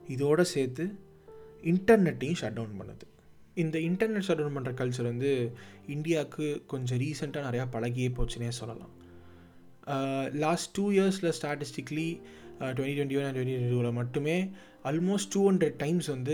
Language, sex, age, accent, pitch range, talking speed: Tamil, male, 20-39, native, 120-155 Hz, 135 wpm